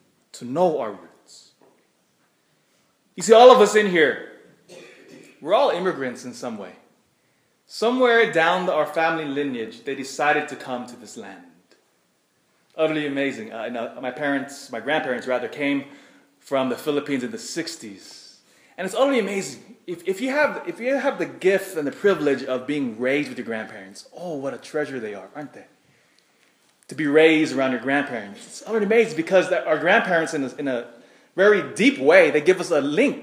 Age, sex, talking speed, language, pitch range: 20-39, male, 185 wpm, English, 135-210 Hz